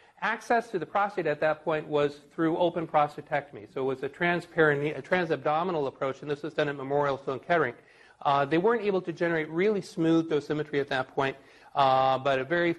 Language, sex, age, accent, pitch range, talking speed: English, male, 40-59, American, 135-170 Hz, 195 wpm